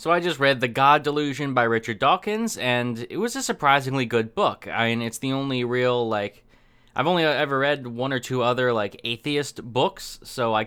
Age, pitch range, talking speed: 20-39, 115-135 Hz, 210 wpm